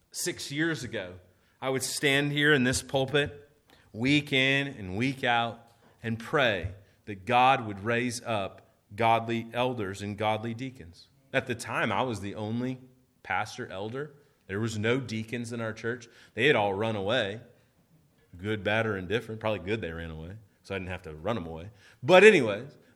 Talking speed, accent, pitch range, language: 175 wpm, American, 115-180 Hz, English